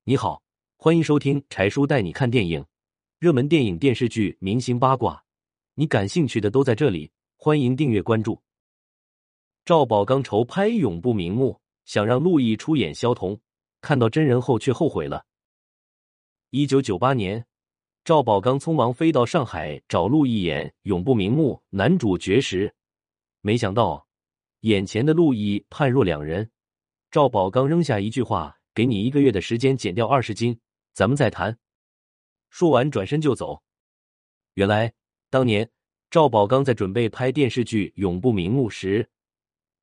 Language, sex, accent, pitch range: Chinese, male, native, 100-135 Hz